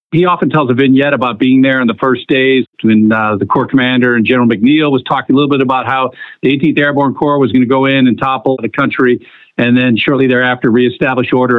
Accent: American